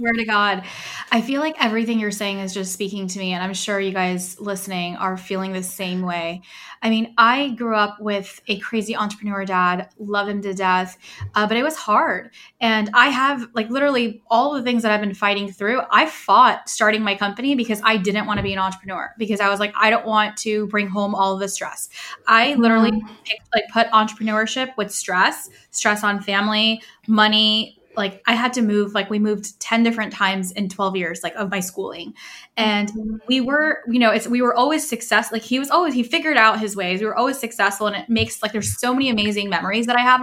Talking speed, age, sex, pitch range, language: 220 wpm, 10-29, female, 200-230 Hz, English